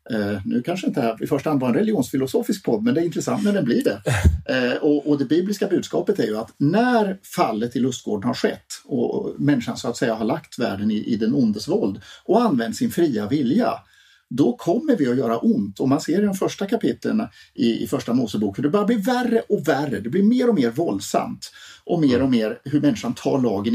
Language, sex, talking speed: Swedish, male, 220 wpm